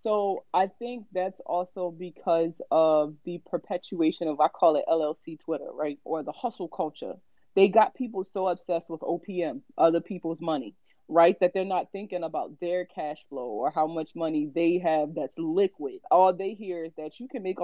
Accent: American